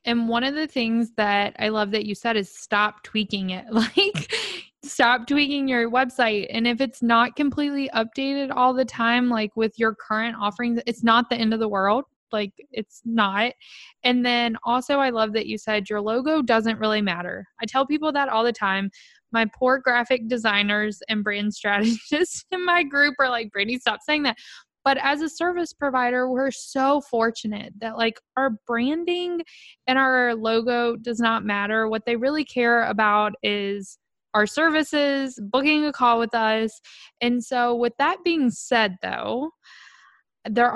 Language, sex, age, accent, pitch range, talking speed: English, female, 20-39, American, 220-270 Hz, 175 wpm